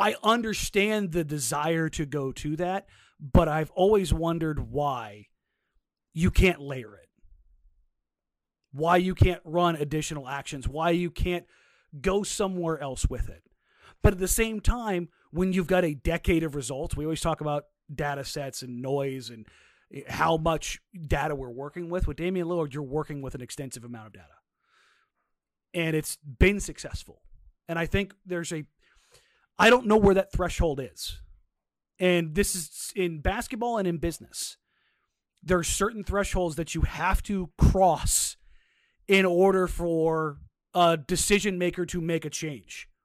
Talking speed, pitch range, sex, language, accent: 155 wpm, 145-180 Hz, male, English, American